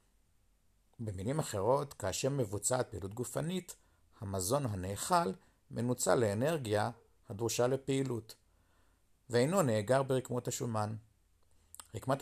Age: 50-69